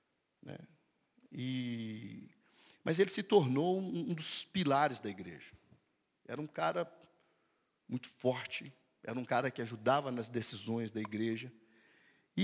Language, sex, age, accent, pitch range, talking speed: Portuguese, male, 50-69, Brazilian, 125-185 Hz, 125 wpm